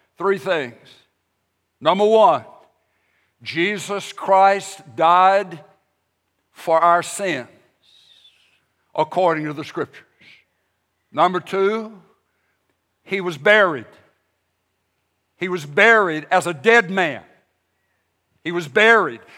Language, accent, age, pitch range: English, American, 60-79, 145-210 Hz